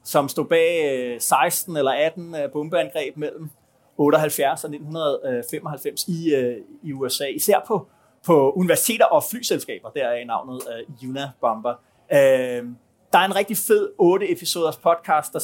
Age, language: 30-49, Danish